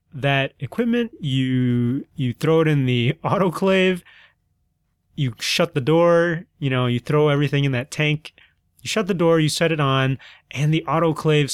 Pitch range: 115-150 Hz